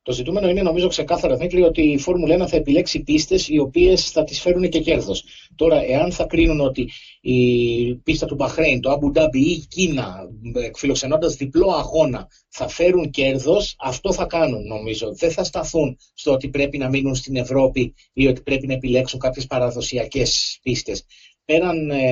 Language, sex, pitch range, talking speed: Greek, male, 130-180 Hz, 175 wpm